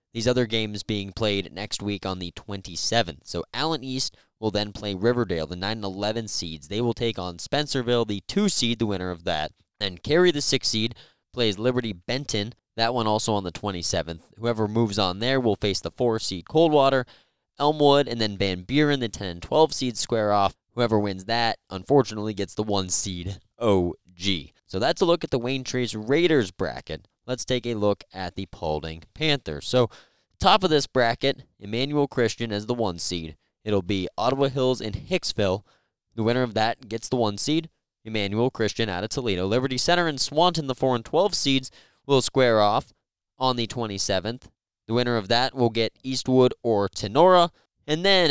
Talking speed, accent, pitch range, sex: 180 wpm, American, 100-130 Hz, male